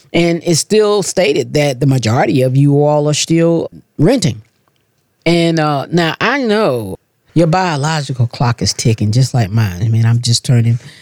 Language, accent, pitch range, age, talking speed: English, American, 120-160 Hz, 40-59, 170 wpm